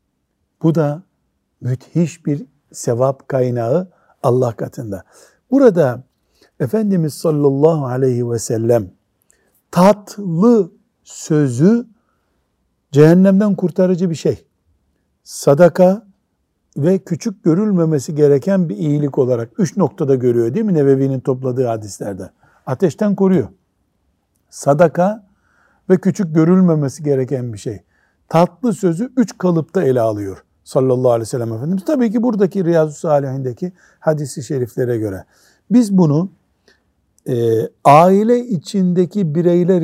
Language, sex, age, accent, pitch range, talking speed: Turkish, male, 60-79, native, 130-185 Hz, 105 wpm